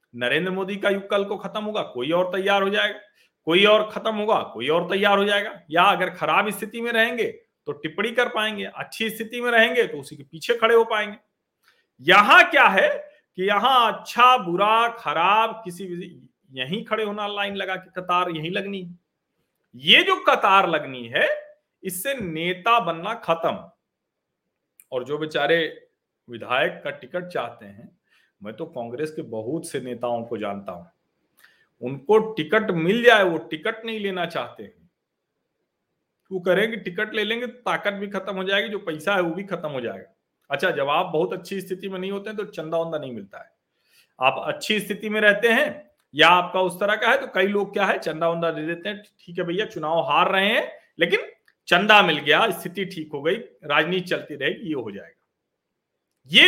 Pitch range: 170-220 Hz